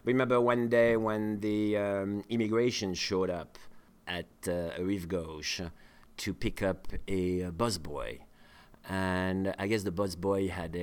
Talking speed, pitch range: 140 wpm, 85-105 Hz